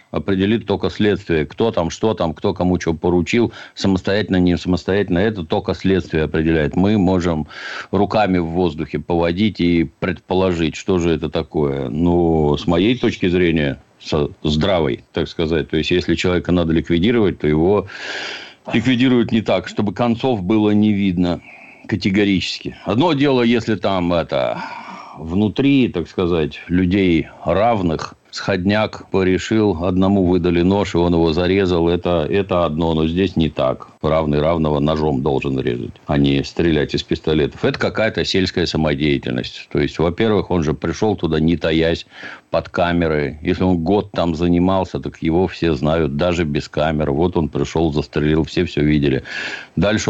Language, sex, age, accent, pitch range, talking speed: Russian, male, 60-79, native, 80-95 Hz, 150 wpm